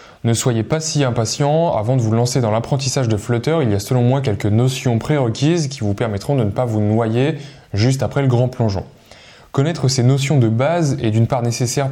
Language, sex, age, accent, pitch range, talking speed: French, male, 20-39, French, 110-135 Hz, 215 wpm